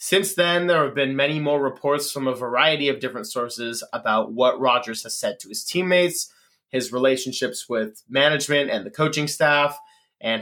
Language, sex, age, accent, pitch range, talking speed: English, male, 20-39, American, 125-150 Hz, 180 wpm